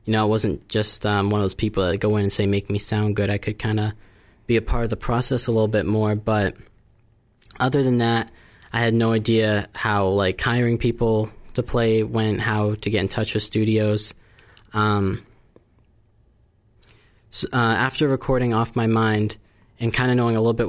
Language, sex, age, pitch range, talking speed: English, male, 10-29, 105-115 Hz, 200 wpm